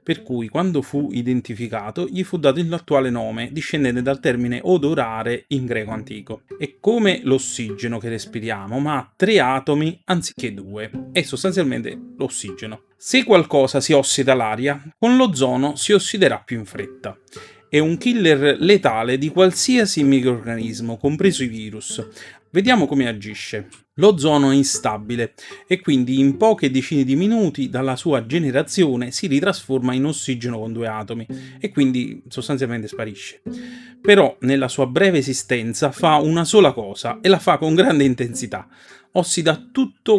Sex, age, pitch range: male, 30-49, 120-165 Hz